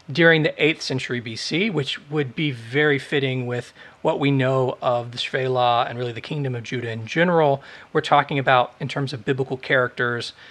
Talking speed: 190 wpm